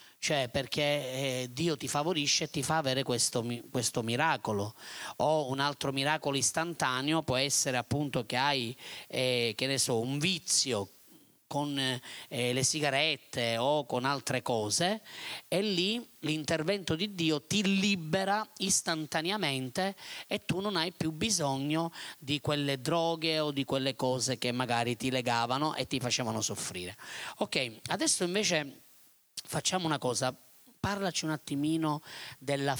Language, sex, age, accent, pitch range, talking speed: Italian, male, 30-49, native, 125-160 Hz, 135 wpm